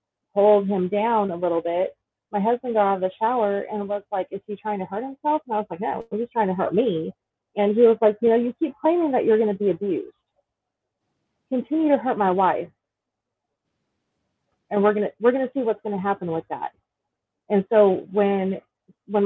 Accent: American